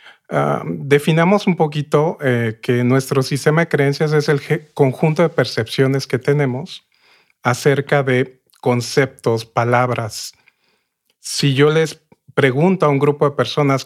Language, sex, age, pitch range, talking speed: Spanish, male, 40-59, 125-150 Hz, 135 wpm